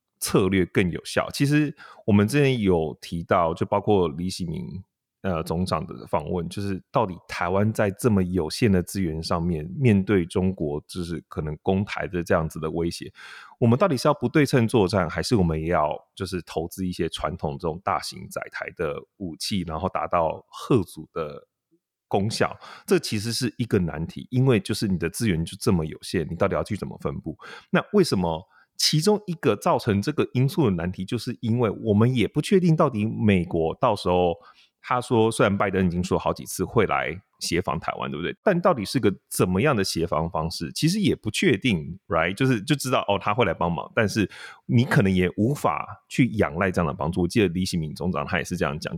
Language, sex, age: Chinese, male, 30-49